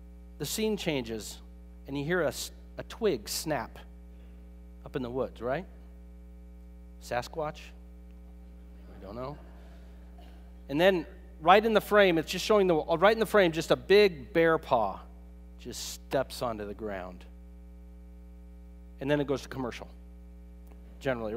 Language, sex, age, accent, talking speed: English, male, 40-59, American, 140 wpm